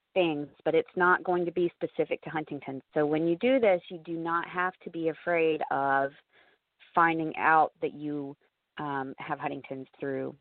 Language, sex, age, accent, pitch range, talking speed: English, female, 30-49, American, 140-165 Hz, 180 wpm